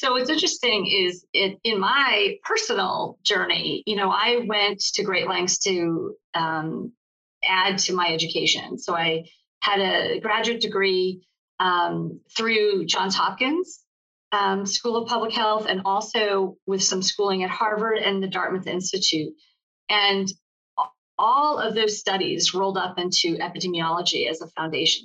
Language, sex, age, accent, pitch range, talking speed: English, female, 40-59, American, 175-210 Hz, 145 wpm